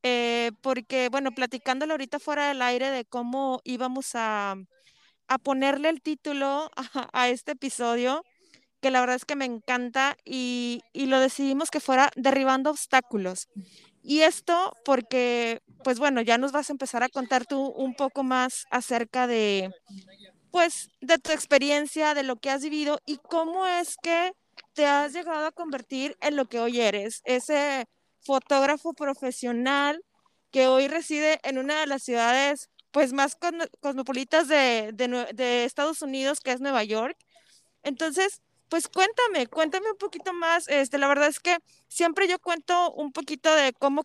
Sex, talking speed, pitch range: female, 160 wpm, 250-300 Hz